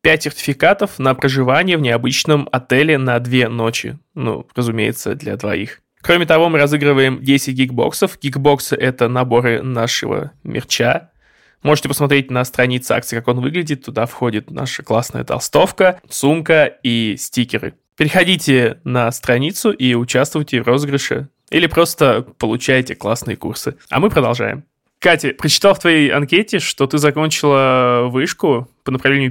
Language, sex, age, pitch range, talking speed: Russian, male, 20-39, 125-145 Hz, 135 wpm